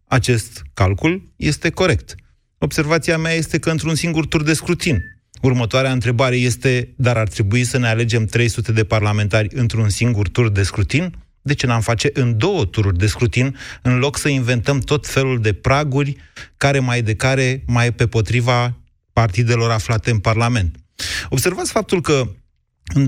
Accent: native